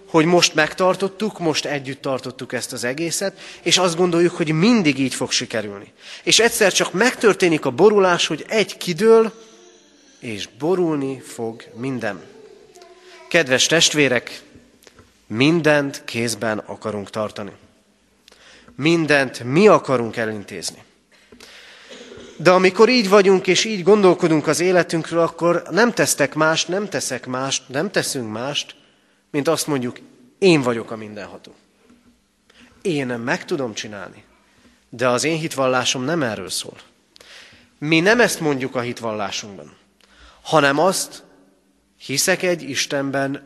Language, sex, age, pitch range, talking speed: Hungarian, male, 30-49, 125-180 Hz, 125 wpm